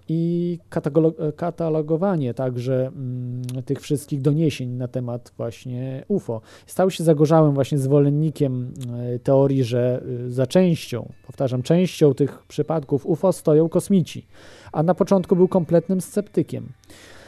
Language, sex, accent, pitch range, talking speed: Polish, male, native, 120-160 Hz, 125 wpm